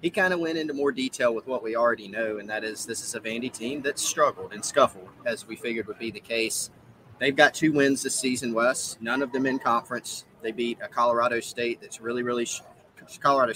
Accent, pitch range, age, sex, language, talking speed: American, 115-150 Hz, 30-49, male, English, 230 wpm